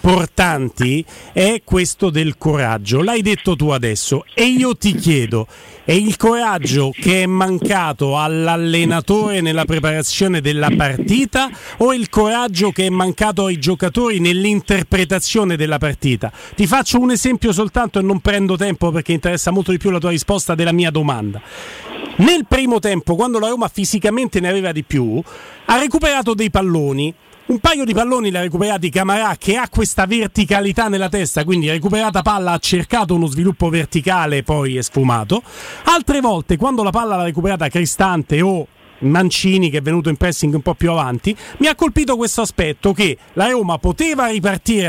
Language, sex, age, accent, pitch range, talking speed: Italian, male, 40-59, native, 165-230 Hz, 165 wpm